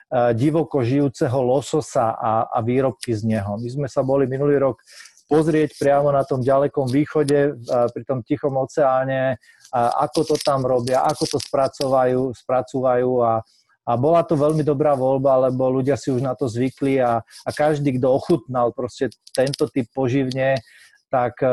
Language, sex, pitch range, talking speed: Slovak, male, 125-150 Hz, 155 wpm